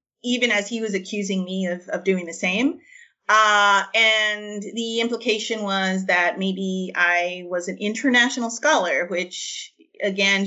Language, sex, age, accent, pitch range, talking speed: English, female, 30-49, American, 180-220 Hz, 145 wpm